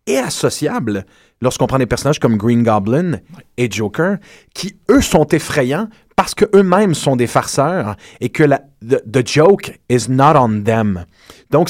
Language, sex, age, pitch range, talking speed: French, male, 30-49, 120-175 Hz, 160 wpm